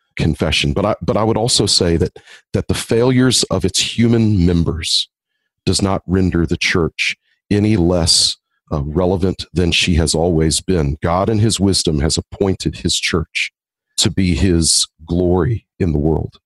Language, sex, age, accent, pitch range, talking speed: English, male, 40-59, American, 85-105 Hz, 165 wpm